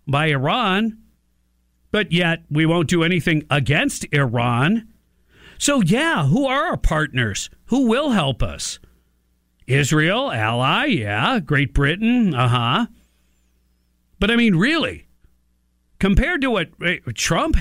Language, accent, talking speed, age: English, American, 120 wpm, 50-69